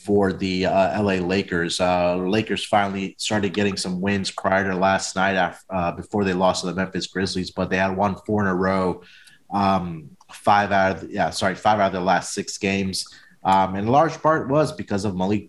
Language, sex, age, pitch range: English, male, 30-49, 95-115 Hz